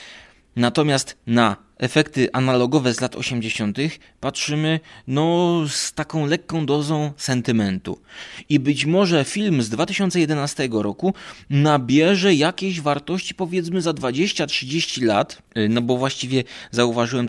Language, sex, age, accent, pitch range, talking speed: Polish, male, 20-39, native, 120-160 Hz, 110 wpm